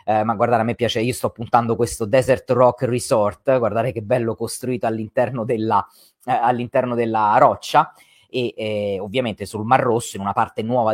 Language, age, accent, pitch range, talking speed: Italian, 30-49, native, 110-150 Hz, 180 wpm